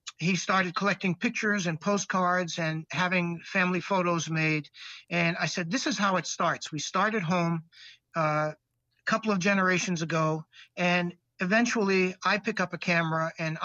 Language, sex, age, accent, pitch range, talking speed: English, male, 50-69, American, 160-190 Hz, 160 wpm